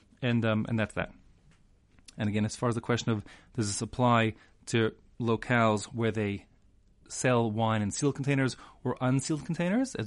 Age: 30-49